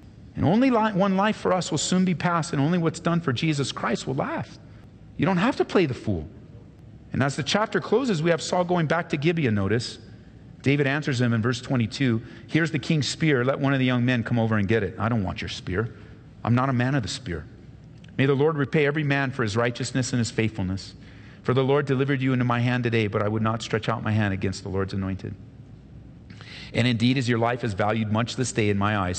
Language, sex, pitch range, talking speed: English, male, 95-130 Hz, 245 wpm